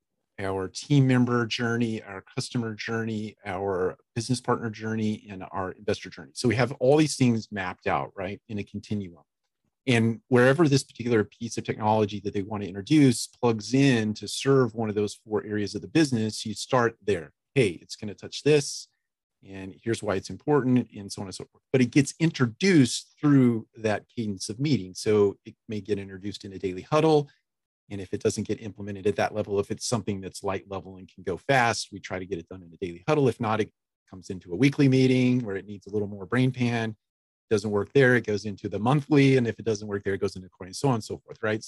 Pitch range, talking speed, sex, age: 100-125 Hz, 230 wpm, male, 40-59